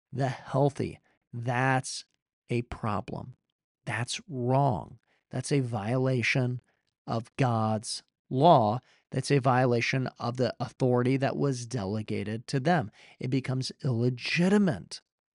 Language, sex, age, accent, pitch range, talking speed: English, male, 40-59, American, 125-150 Hz, 105 wpm